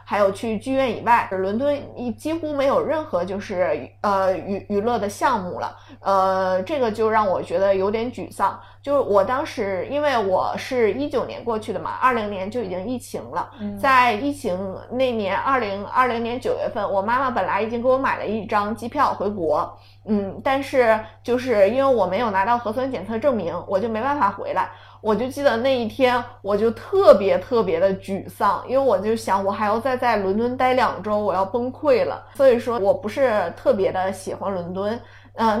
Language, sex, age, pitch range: Chinese, female, 20-39, 195-255 Hz